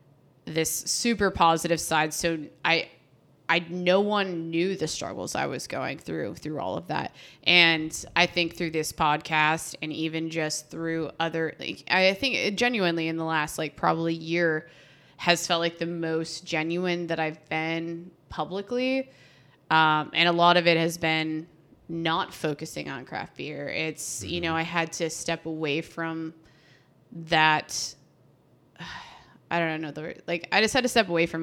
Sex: female